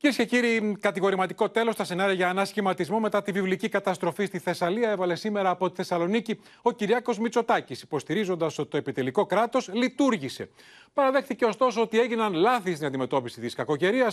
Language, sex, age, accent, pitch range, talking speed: Greek, male, 30-49, native, 175-230 Hz, 160 wpm